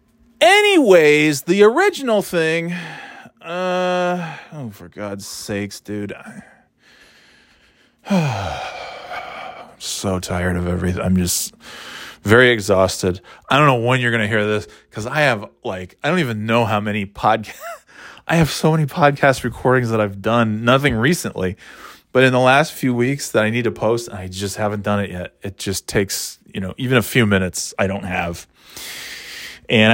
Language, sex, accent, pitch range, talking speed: English, male, American, 100-145 Hz, 160 wpm